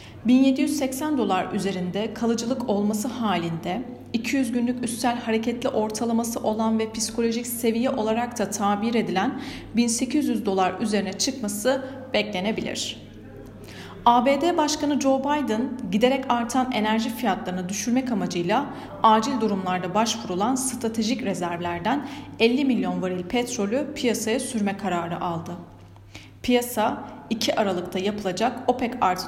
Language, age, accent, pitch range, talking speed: Turkish, 40-59, native, 195-250 Hz, 110 wpm